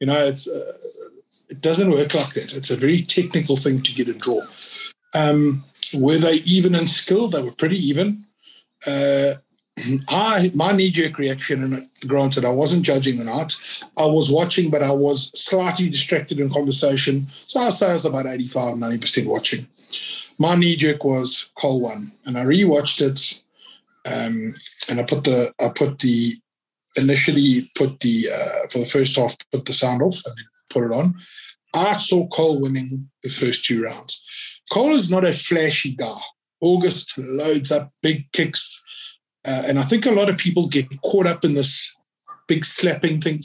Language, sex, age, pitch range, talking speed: English, male, 50-69, 135-180 Hz, 180 wpm